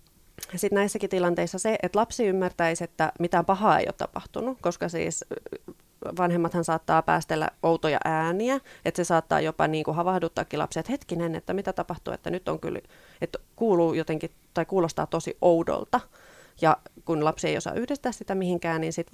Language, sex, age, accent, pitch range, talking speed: Finnish, female, 30-49, native, 165-225 Hz, 165 wpm